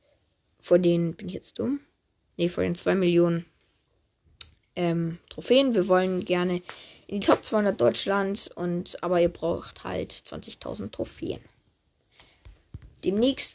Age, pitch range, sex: 20-39, 170-200 Hz, female